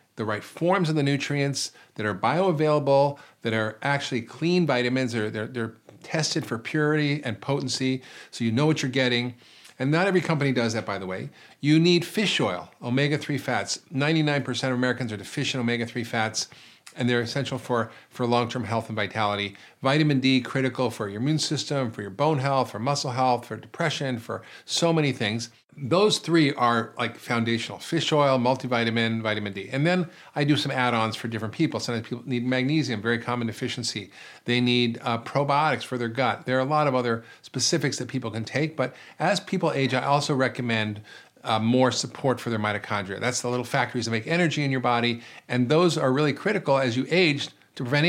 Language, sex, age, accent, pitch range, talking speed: English, male, 40-59, American, 115-145 Hz, 195 wpm